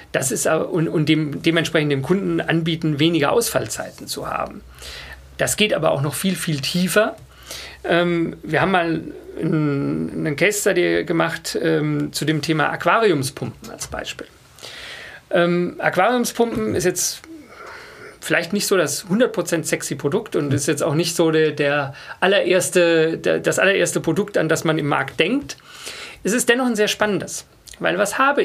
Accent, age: German, 40-59